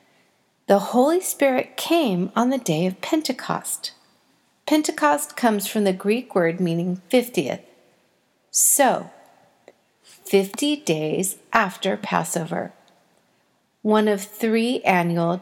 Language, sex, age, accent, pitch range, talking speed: English, female, 50-69, American, 190-260 Hz, 100 wpm